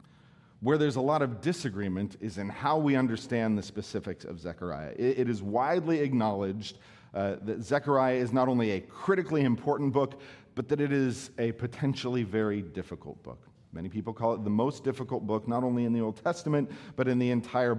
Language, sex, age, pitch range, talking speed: English, male, 40-59, 100-130 Hz, 190 wpm